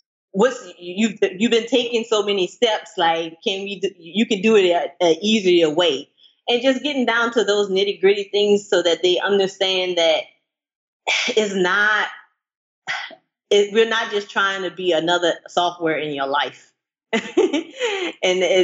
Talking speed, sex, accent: 150 wpm, female, American